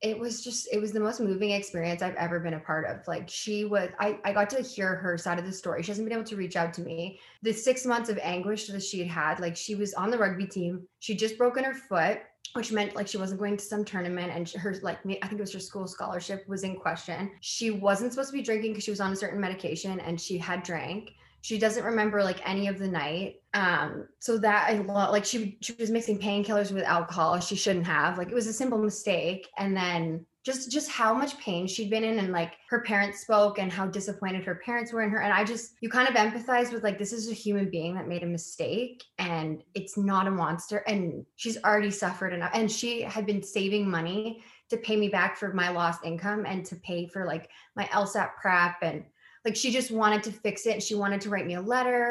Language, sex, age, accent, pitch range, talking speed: English, female, 20-39, American, 180-220 Hz, 250 wpm